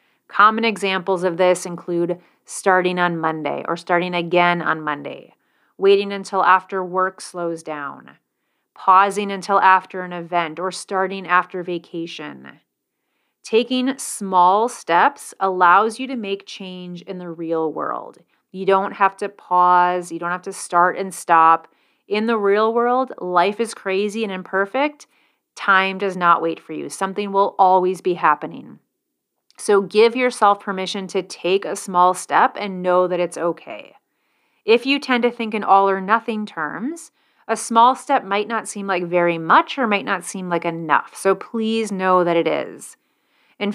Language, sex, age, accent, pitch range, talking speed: English, female, 30-49, American, 175-210 Hz, 160 wpm